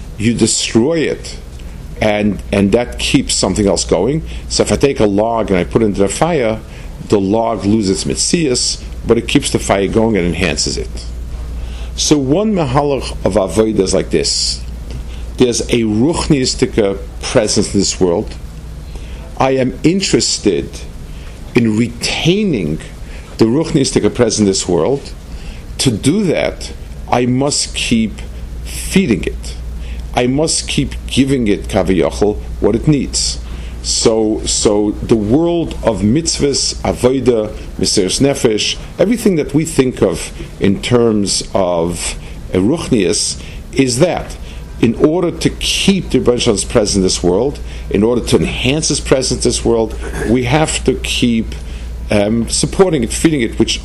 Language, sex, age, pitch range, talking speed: English, male, 50-69, 75-120 Hz, 145 wpm